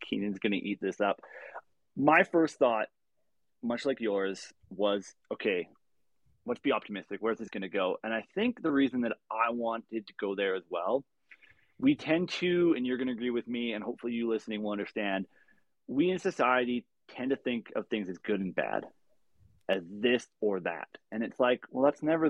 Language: English